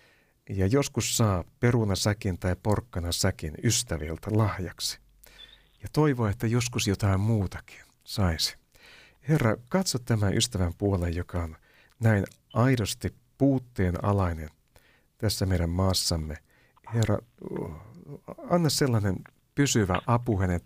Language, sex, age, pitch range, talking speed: Finnish, male, 50-69, 90-120 Hz, 105 wpm